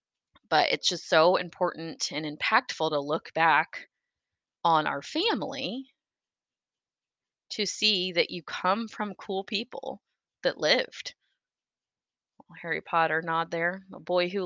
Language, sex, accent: English, female, American